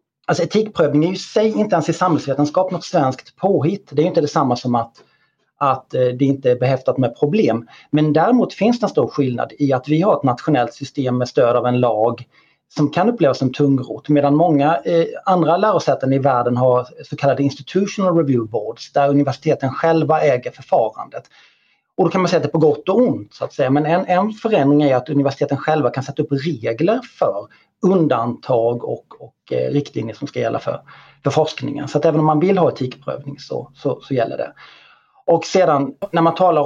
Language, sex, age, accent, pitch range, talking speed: Swedish, male, 30-49, native, 135-170 Hz, 195 wpm